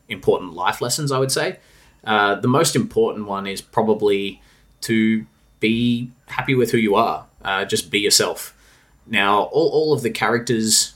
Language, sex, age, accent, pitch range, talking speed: English, male, 20-39, Australian, 110-140 Hz, 165 wpm